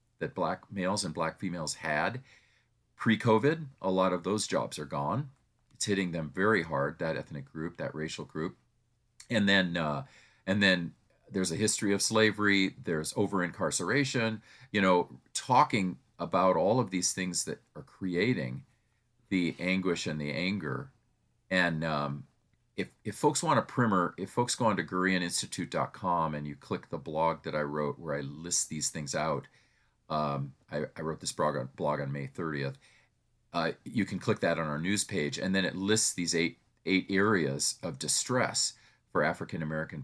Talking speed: 170 wpm